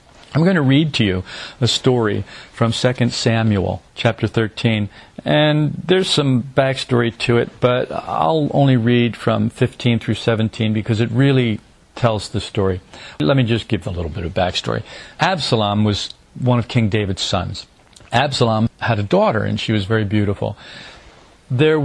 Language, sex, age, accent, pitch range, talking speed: English, male, 50-69, American, 110-130 Hz, 160 wpm